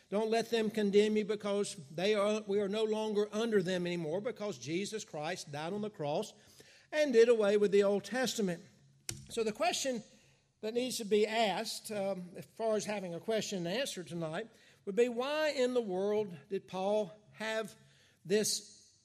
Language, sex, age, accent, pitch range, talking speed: English, male, 60-79, American, 175-220 Hz, 175 wpm